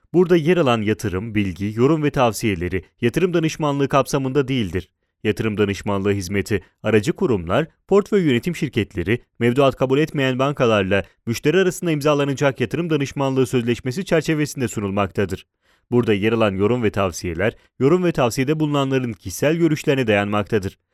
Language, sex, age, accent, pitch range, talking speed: Italian, male, 30-49, Turkish, 100-145 Hz, 130 wpm